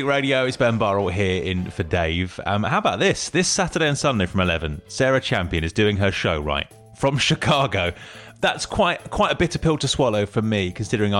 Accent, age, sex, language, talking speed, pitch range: British, 30-49, male, English, 205 wpm, 90-125 Hz